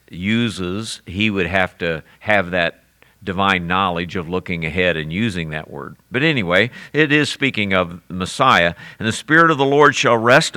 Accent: American